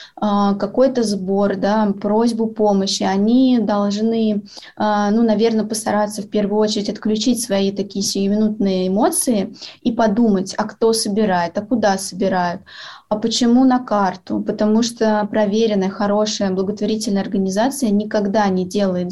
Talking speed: 120 wpm